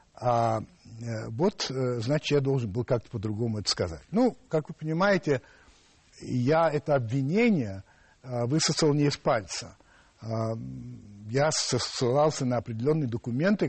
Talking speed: 115 wpm